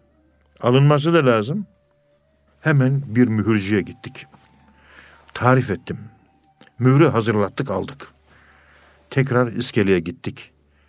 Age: 60-79